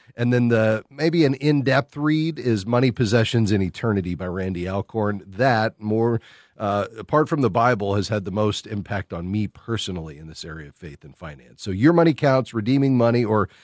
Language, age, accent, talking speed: English, 40-59, American, 195 wpm